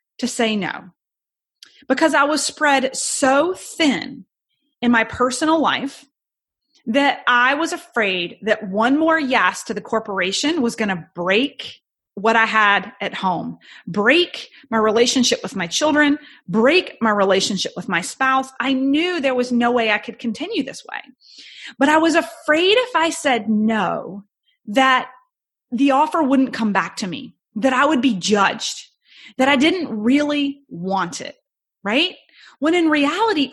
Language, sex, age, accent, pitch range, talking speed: English, female, 30-49, American, 225-295 Hz, 155 wpm